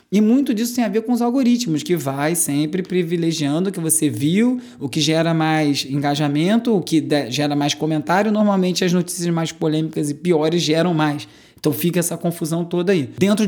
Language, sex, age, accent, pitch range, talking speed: Portuguese, male, 20-39, Brazilian, 155-205 Hz, 190 wpm